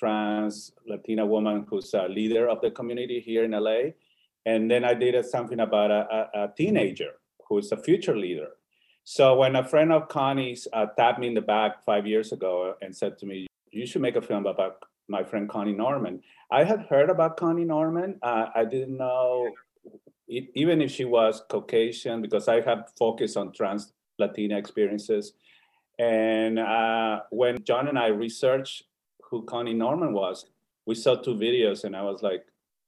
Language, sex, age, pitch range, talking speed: English, male, 40-59, 105-130 Hz, 175 wpm